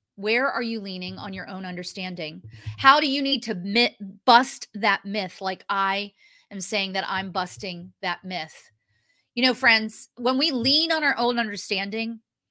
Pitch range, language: 190-255 Hz, English